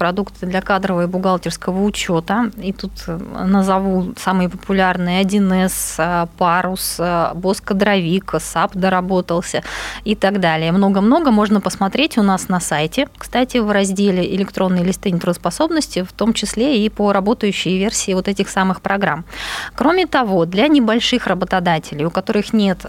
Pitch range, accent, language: 180-220 Hz, native, Russian